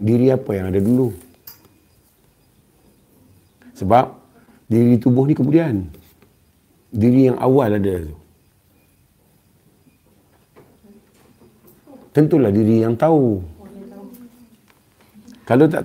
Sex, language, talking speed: male, Malay, 80 wpm